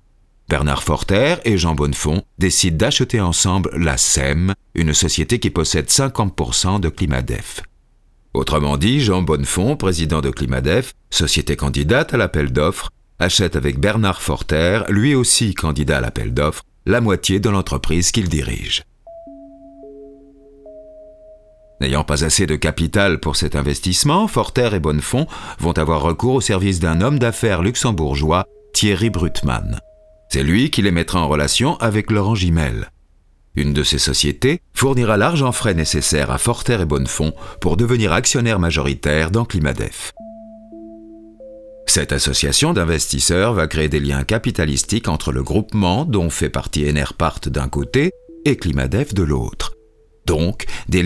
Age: 40-59